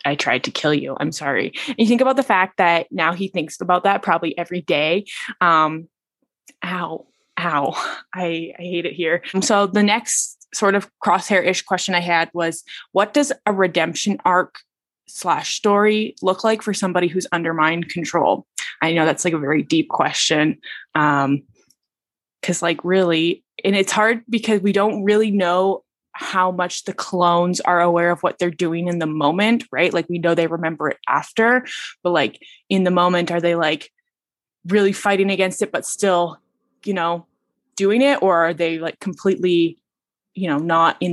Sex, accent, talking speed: female, American, 180 wpm